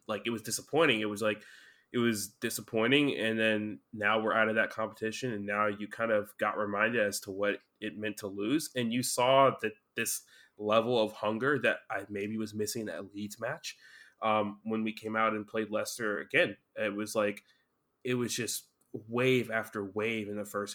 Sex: male